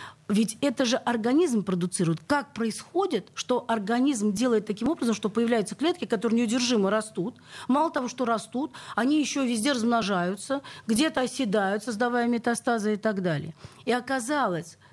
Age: 40-59